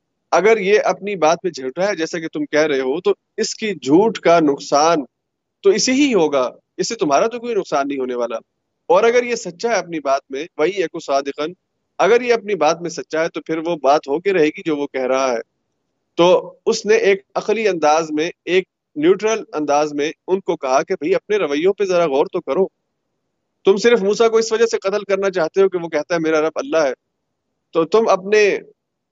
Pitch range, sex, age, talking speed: 155-225 Hz, male, 30-49, 220 wpm